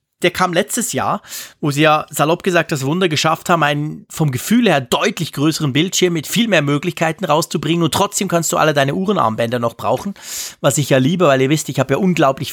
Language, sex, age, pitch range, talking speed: German, male, 30-49, 145-190 Hz, 215 wpm